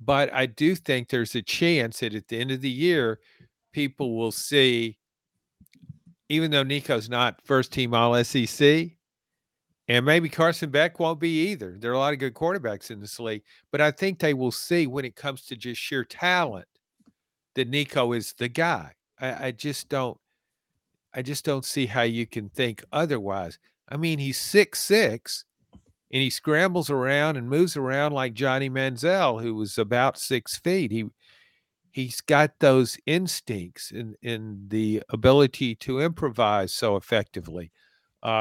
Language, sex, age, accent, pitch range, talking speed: English, male, 50-69, American, 120-155 Hz, 170 wpm